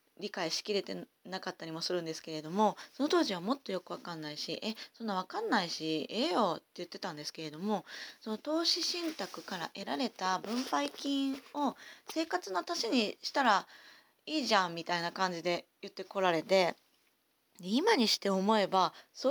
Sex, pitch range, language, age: female, 175-260 Hz, Japanese, 20-39